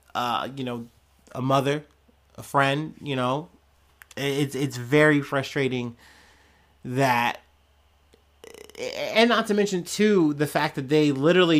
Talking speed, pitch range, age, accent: 125 wpm, 125-155 Hz, 30-49, American